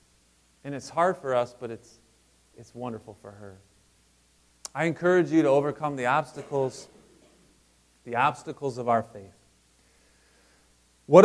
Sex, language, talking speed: male, English, 130 wpm